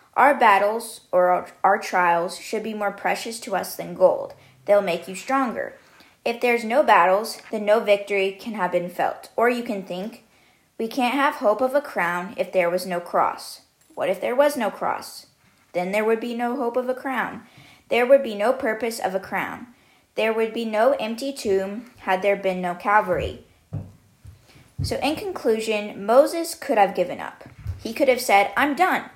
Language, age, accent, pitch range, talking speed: English, 20-39, American, 190-240 Hz, 190 wpm